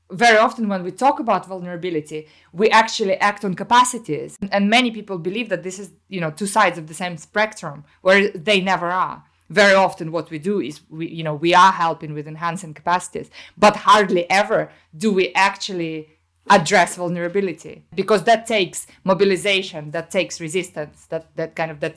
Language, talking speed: English, 180 wpm